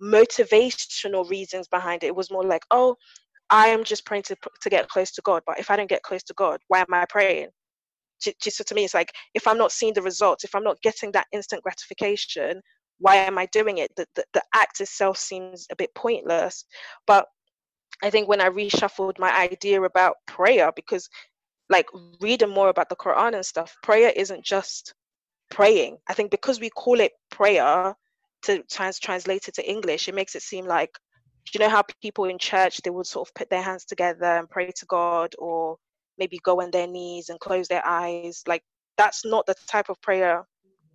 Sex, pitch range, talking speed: female, 180-215 Hz, 205 wpm